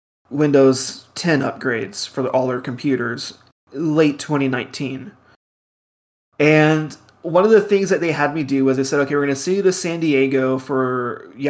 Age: 20-39